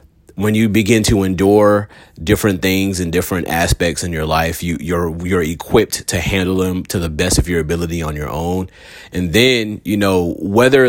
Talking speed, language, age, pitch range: 185 wpm, English, 30-49, 90-110 Hz